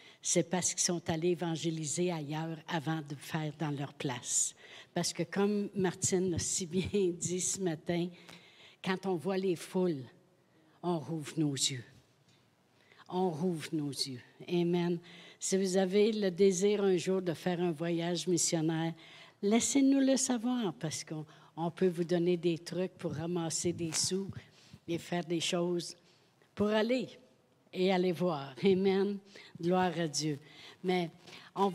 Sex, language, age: female, French, 60-79